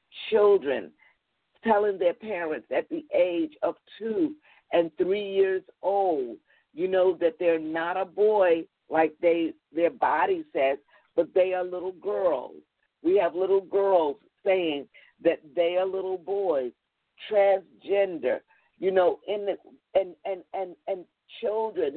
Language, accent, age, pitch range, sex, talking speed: English, American, 50-69, 175-225 Hz, female, 135 wpm